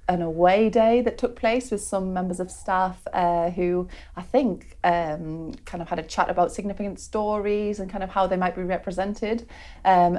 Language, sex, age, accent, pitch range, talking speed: English, female, 30-49, British, 175-205 Hz, 195 wpm